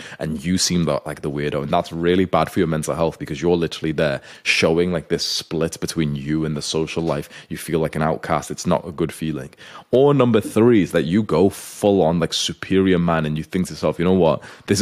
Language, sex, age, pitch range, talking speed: English, male, 20-39, 85-110 Hz, 245 wpm